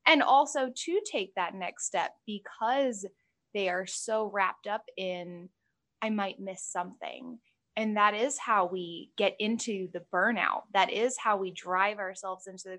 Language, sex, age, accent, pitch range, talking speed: English, female, 10-29, American, 185-230 Hz, 165 wpm